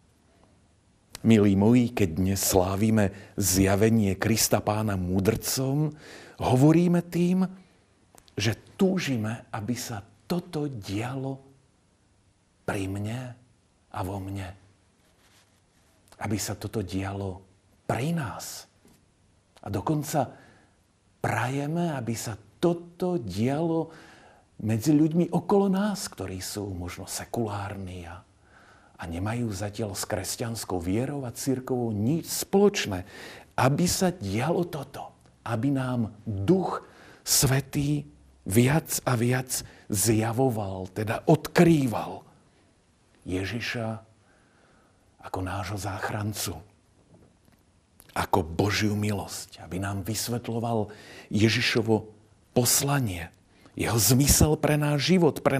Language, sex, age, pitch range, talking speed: Slovak, male, 50-69, 100-135 Hz, 90 wpm